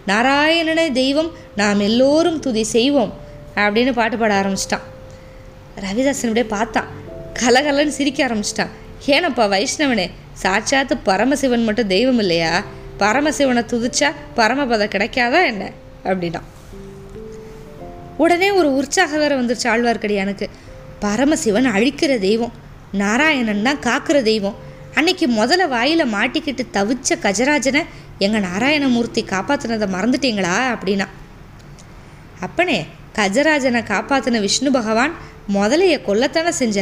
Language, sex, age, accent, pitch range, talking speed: Tamil, female, 20-39, native, 205-280 Hz, 95 wpm